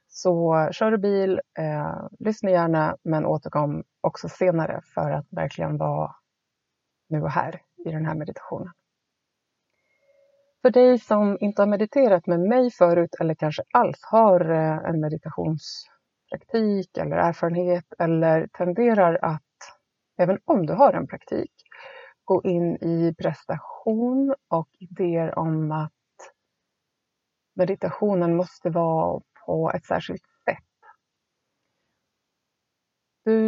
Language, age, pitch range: Swedish, 30-49, 160-205 Hz